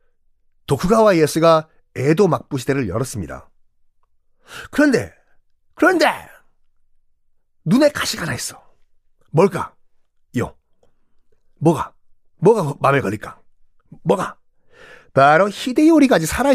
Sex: male